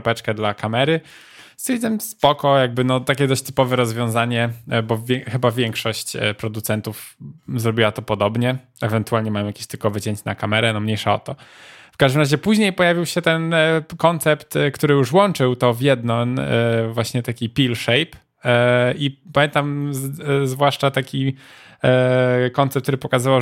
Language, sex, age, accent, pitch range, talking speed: Polish, male, 10-29, native, 115-140 Hz, 145 wpm